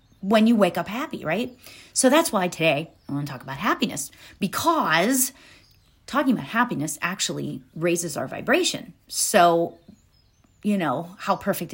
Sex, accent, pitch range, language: female, American, 170-250 Hz, English